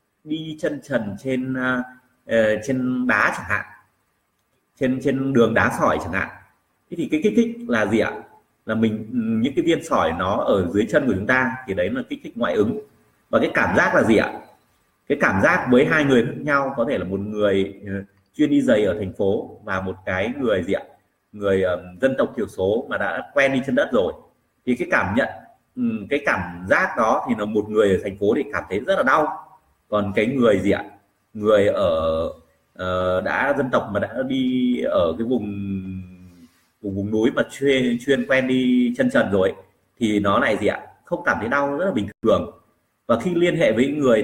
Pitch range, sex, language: 100-155 Hz, male, Vietnamese